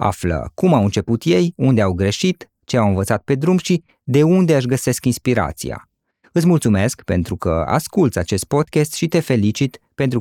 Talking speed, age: 175 wpm, 20-39